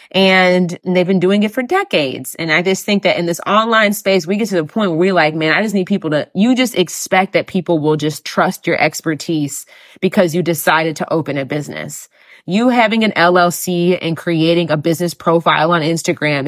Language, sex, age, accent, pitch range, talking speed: English, female, 20-39, American, 155-200 Hz, 210 wpm